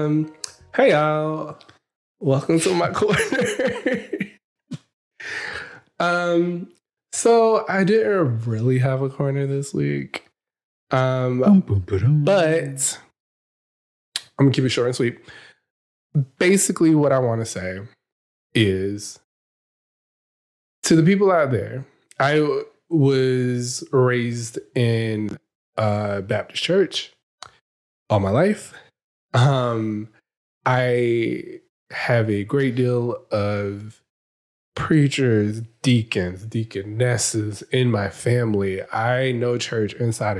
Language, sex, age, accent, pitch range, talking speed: English, male, 20-39, American, 110-145 Hz, 95 wpm